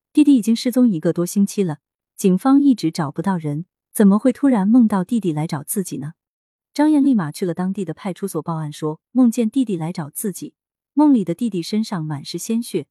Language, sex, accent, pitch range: Chinese, female, native, 160-230 Hz